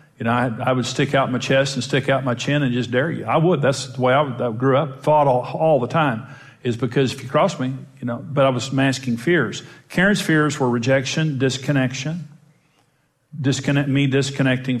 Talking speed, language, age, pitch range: 220 wpm, English, 50-69, 130-150 Hz